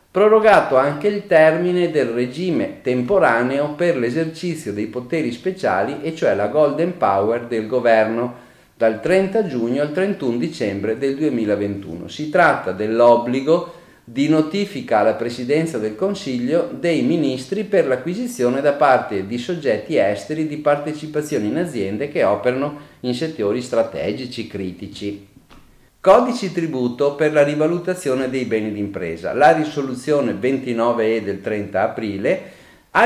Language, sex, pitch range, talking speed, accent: Italian, male, 115-160 Hz, 125 wpm, native